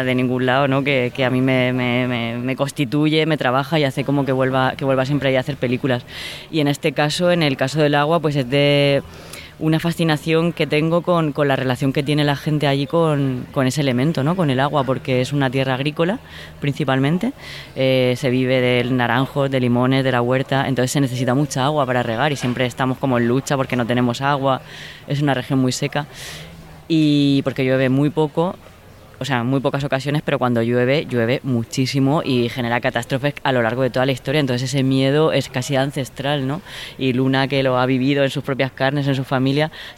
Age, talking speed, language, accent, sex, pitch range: 20-39, 215 wpm, Spanish, Spanish, female, 130-150 Hz